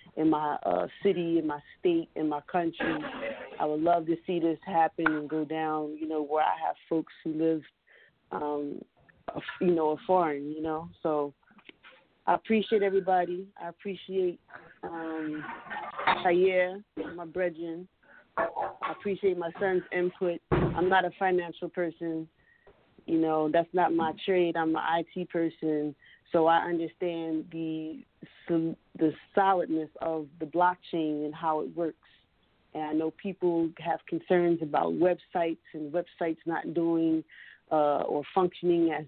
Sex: female